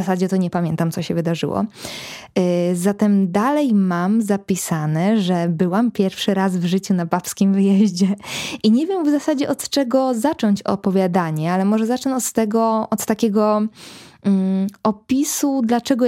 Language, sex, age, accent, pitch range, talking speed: Polish, female, 20-39, native, 185-230 Hz, 140 wpm